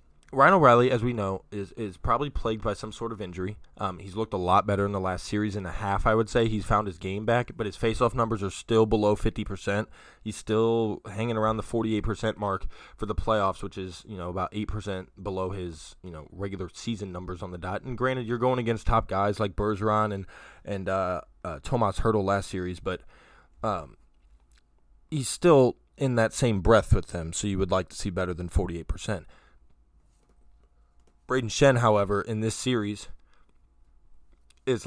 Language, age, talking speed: English, 20-39, 205 wpm